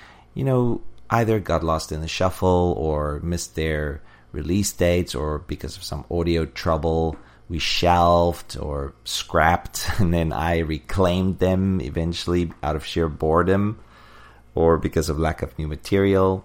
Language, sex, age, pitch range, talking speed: English, male, 30-49, 75-90 Hz, 145 wpm